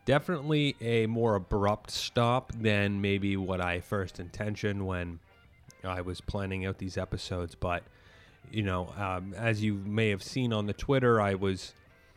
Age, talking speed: 30-49, 160 wpm